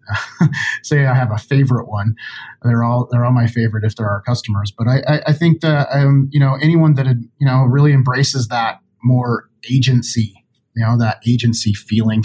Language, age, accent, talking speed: English, 30-49, American, 190 wpm